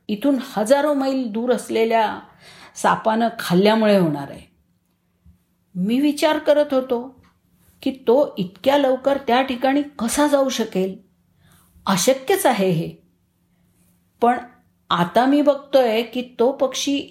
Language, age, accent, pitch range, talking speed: Marathi, 50-69, native, 160-255 Hz, 110 wpm